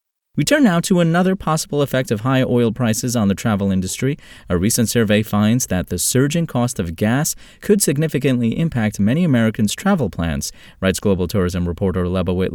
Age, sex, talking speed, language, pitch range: 30-49, male, 175 wpm, English, 95-130 Hz